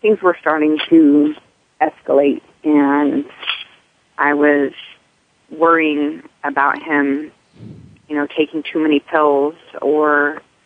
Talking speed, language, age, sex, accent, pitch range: 100 wpm, English, 40-59, female, American, 145-170 Hz